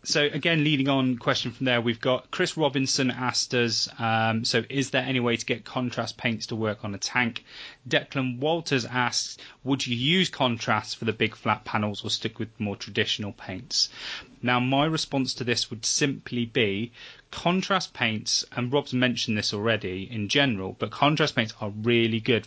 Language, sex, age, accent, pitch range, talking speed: English, male, 30-49, British, 115-140 Hz, 185 wpm